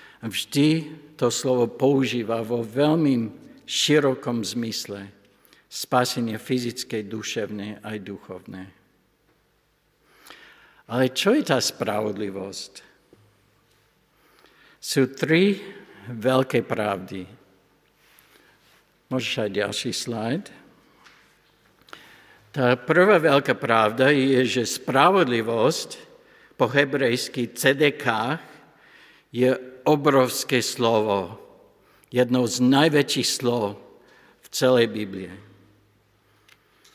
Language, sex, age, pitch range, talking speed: Slovak, male, 60-79, 110-130 Hz, 75 wpm